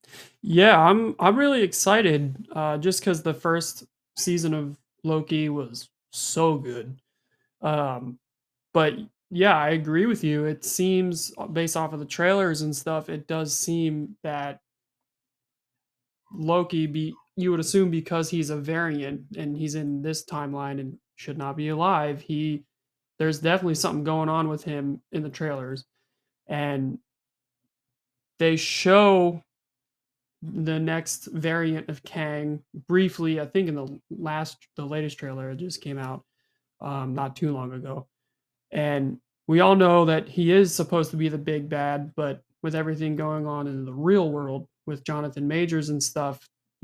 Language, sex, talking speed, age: English, male, 150 wpm, 20-39